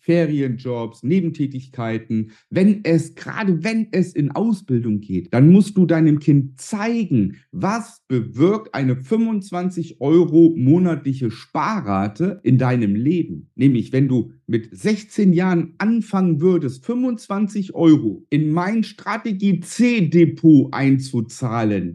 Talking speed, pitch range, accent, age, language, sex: 110 wpm, 130-180 Hz, German, 50-69, German, male